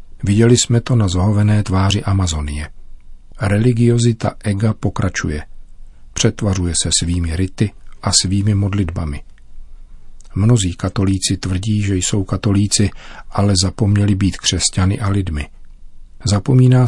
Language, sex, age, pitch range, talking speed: Czech, male, 40-59, 90-105 Hz, 105 wpm